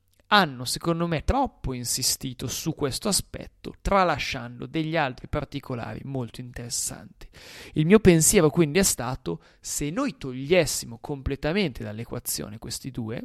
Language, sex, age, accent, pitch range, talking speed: Italian, male, 30-49, native, 120-170 Hz, 120 wpm